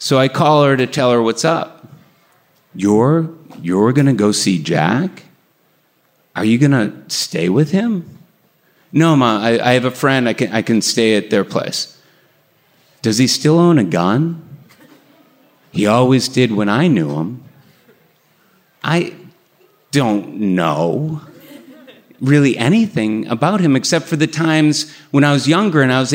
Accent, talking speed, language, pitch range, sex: American, 160 wpm, English, 125-160 Hz, male